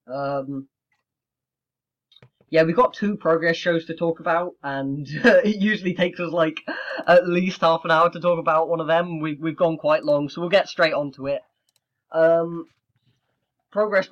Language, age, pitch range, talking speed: English, 10-29, 135-170 Hz, 180 wpm